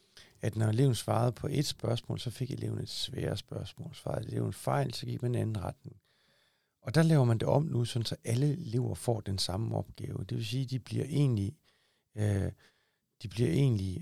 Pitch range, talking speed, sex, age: 110-135 Hz, 200 wpm, male, 60-79